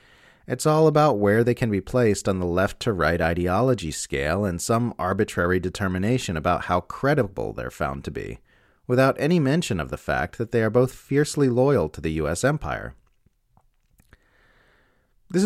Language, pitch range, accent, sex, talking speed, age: English, 80-115 Hz, American, male, 160 wpm, 30-49